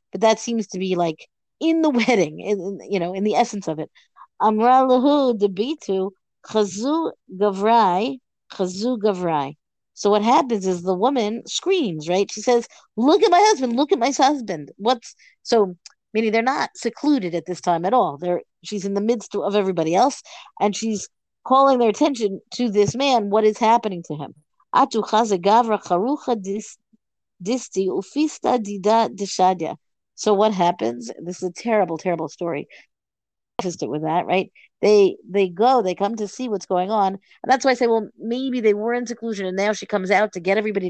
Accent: American